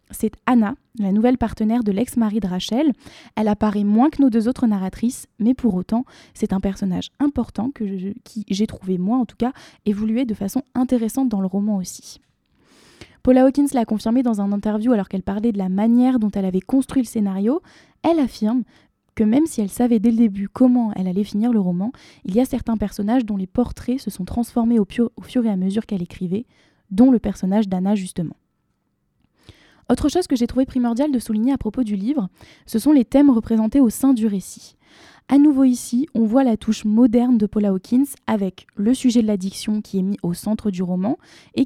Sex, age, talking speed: female, 10-29, 210 wpm